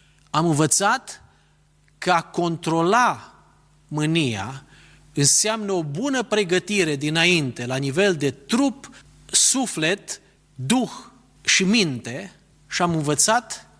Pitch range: 150-200 Hz